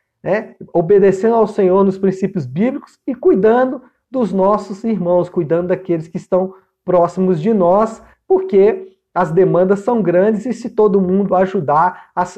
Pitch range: 180-230 Hz